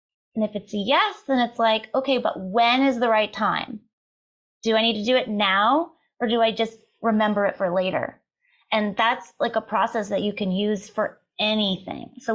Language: English